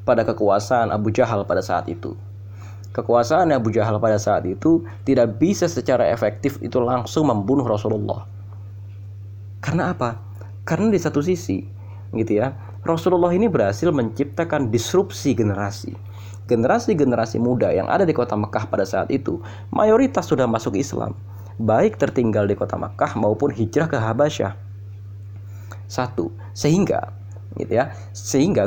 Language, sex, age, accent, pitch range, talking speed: Indonesian, male, 20-39, native, 100-130 Hz, 130 wpm